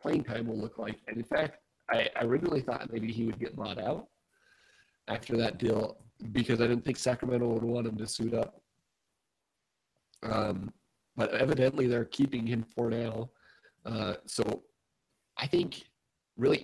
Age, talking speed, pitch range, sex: 40-59, 160 wpm, 110-125 Hz, male